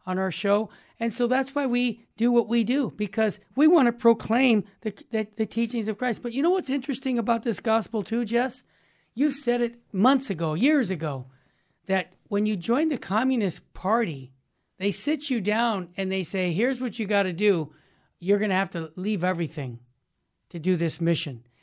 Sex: male